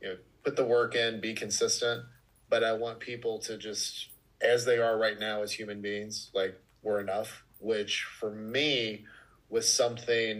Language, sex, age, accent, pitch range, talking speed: English, male, 30-49, American, 105-115 Hz, 175 wpm